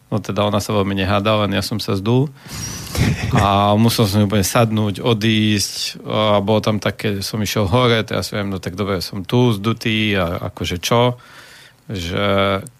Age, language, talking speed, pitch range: 40-59, Slovak, 175 wpm, 105-125 Hz